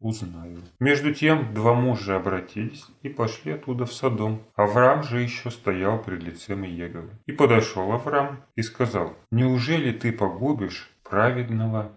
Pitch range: 100-125 Hz